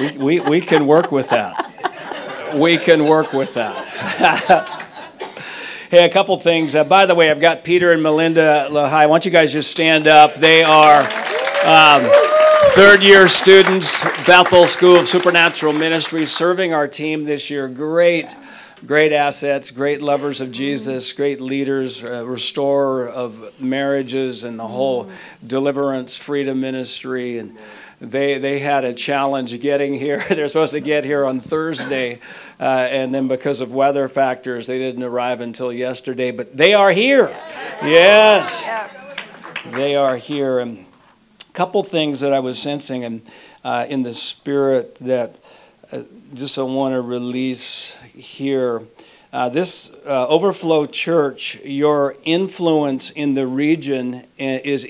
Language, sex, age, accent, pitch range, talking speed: English, male, 50-69, American, 130-160 Hz, 150 wpm